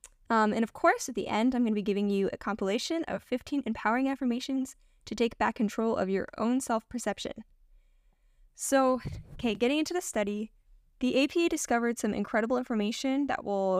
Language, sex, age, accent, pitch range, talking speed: English, female, 10-29, American, 210-250 Hz, 180 wpm